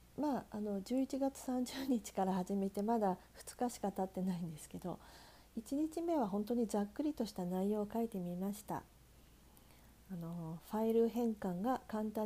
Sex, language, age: female, Japanese, 50-69